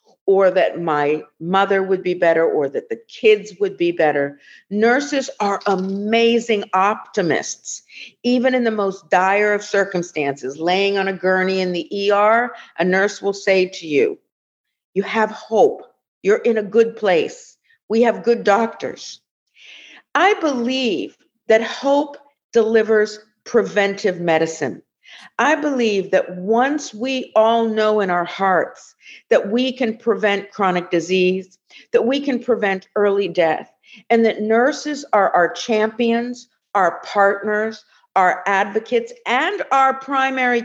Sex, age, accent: female, 50-69, American